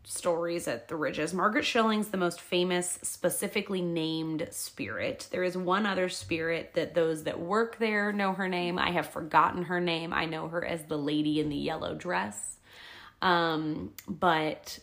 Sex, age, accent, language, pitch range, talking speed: female, 20-39, American, English, 165-190 Hz, 170 wpm